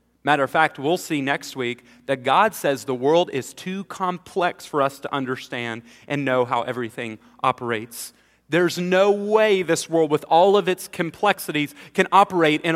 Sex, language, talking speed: male, English, 175 wpm